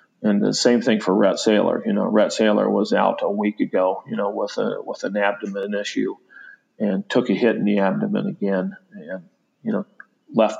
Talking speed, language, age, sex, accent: 205 wpm, English, 40-59, male, American